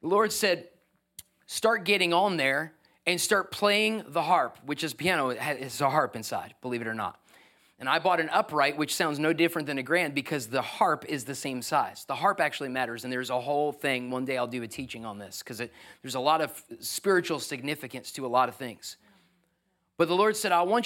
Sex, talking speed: male, 220 wpm